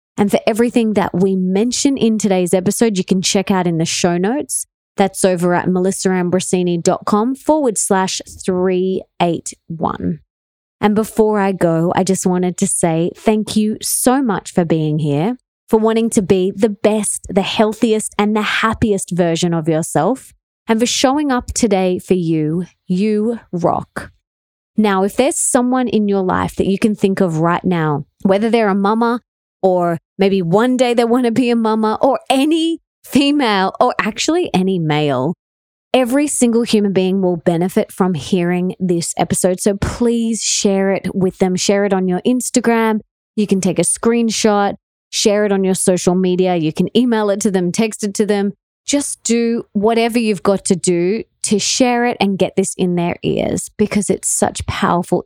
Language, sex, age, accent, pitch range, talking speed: English, female, 20-39, Australian, 180-225 Hz, 175 wpm